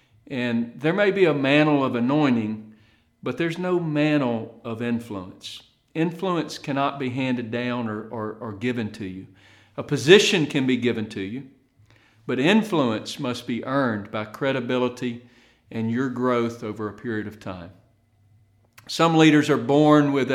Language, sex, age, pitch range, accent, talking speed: English, male, 40-59, 115-145 Hz, American, 150 wpm